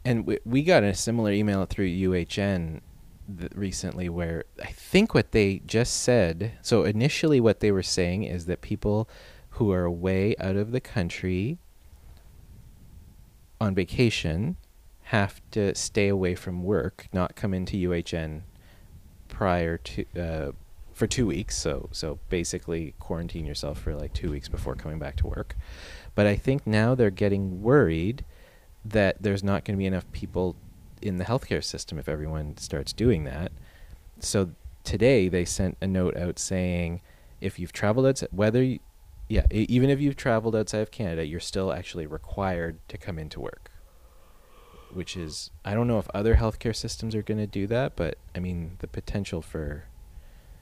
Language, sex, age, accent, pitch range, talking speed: English, male, 30-49, American, 85-105 Hz, 165 wpm